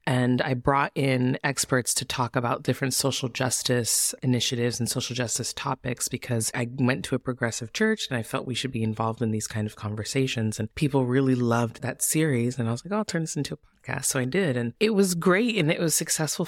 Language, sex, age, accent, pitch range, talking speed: English, female, 20-39, American, 130-175 Hz, 230 wpm